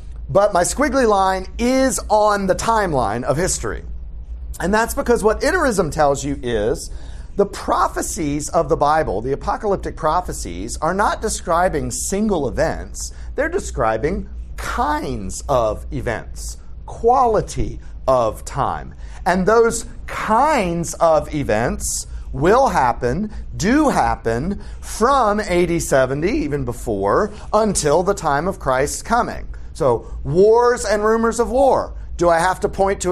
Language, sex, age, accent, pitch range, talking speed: English, male, 40-59, American, 140-210 Hz, 130 wpm